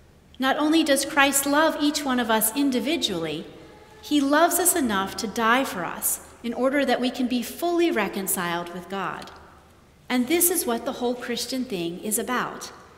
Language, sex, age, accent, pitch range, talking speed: English, female, 40-59, American, 220-290 Hz, 175 wpm